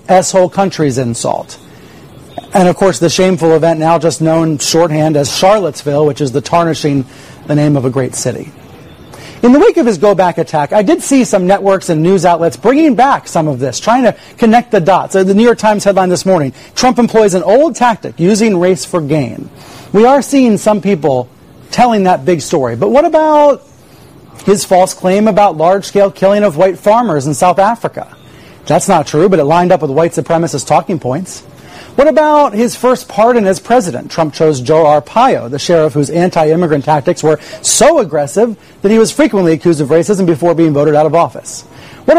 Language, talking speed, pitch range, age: English, 190 wpm, 160-225 Hz, 40-59